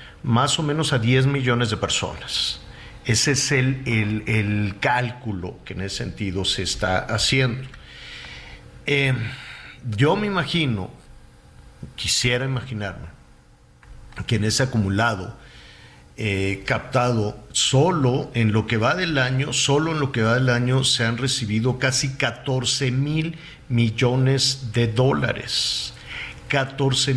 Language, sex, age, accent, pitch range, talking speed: Spanish, male, 50-69, Mexican, 105-130 Hz, 125 wpm